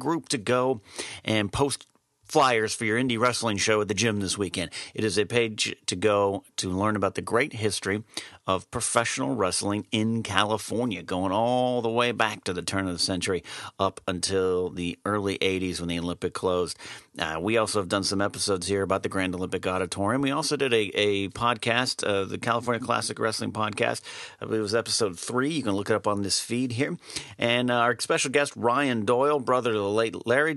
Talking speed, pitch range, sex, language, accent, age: 200 wpm, 95-120 Hz, male, English, American, 40-59